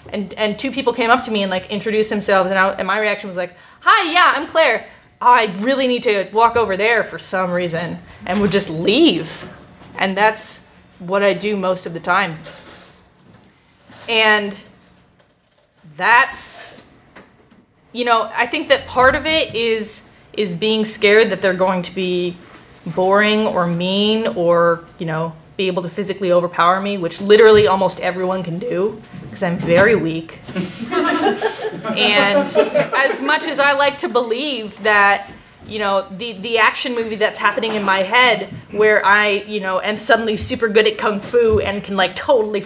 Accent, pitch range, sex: American, 190-240 Hz, female